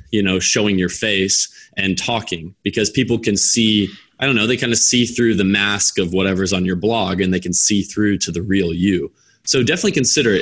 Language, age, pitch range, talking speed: English, 20-39, 95-115 Hz, 220 wpm